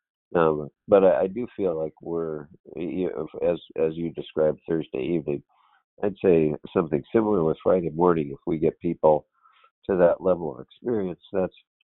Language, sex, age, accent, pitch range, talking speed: English, male, 50-69, American, 75-85 Hz, 165 wpm